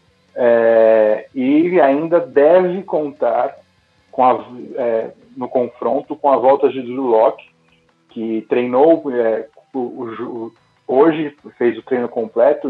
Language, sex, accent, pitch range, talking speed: English, male, Brazilian, 115-145 Hz, 120 wpm